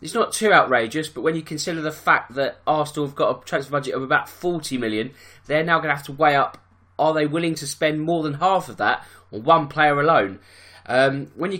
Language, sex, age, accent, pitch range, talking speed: English, male, 20-39, British, 125-160 Hz, 240 wpm